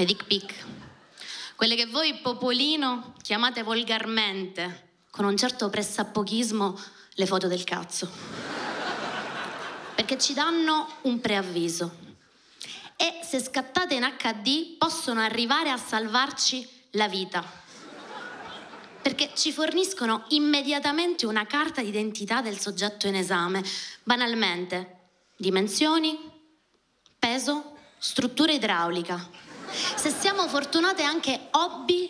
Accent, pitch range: native, 200-290 Hz